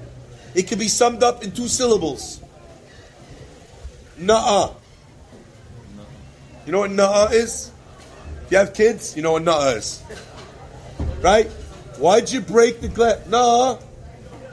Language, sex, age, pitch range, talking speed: English, male, 30-49, 175-225 Hz, 125 wpm